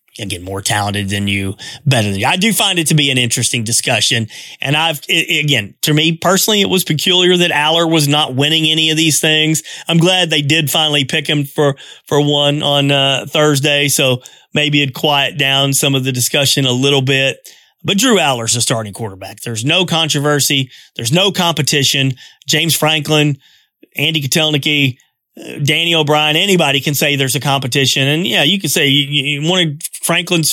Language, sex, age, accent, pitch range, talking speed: English, male, 30-49, American, 135-170 Hz, 185 wpm